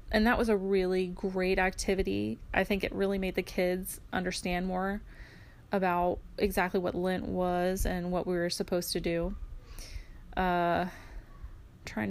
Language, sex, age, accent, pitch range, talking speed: English, female, 20-39, American, 180-210 Hz, 150 wpm